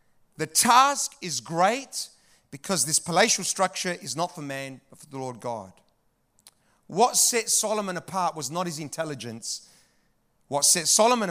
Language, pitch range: English, 165-220 Hz